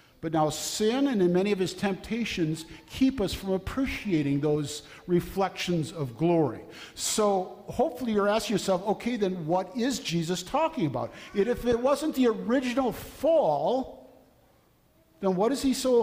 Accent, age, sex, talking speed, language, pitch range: American, 50-69, male, 150 wpm, English, 160-220 Hz